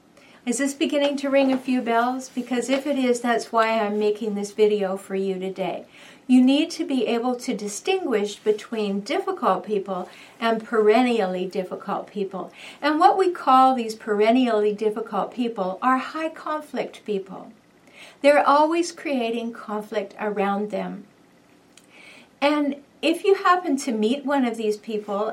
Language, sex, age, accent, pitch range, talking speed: English, female, 50-69, American, 210-280 Hz, 150 wpm